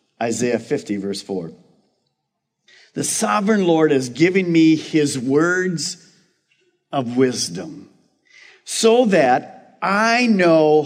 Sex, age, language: male, 50-69, English